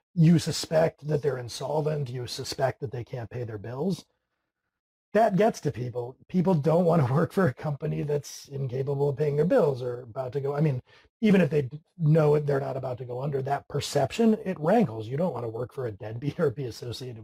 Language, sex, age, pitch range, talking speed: English, male, 40-59, 135-180 Hz, 215 wpm